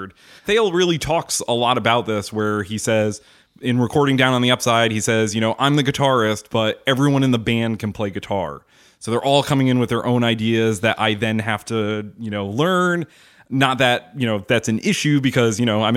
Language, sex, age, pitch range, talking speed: English, male, 30-49, 105-120 Hz, 220 wpm